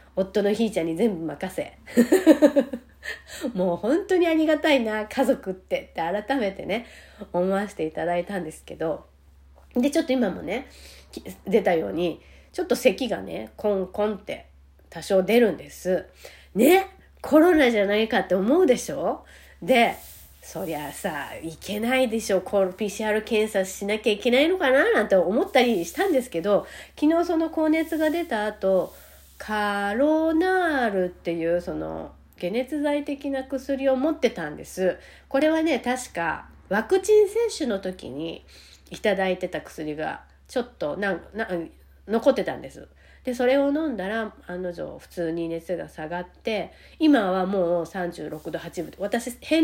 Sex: female